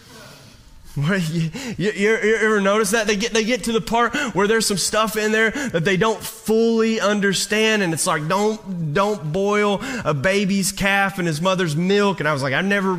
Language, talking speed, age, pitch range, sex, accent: English, 200 wpm, 30-49, 150-205 Hz, male, American